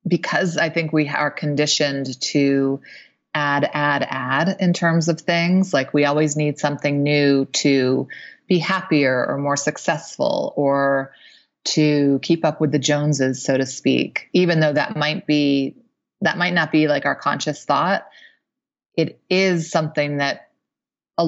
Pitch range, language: 145-165 Hz, English